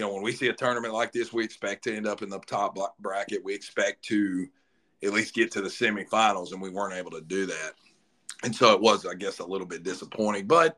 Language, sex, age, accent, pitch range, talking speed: English, male, 50-69, American, 100-130 Hz, 250 wpm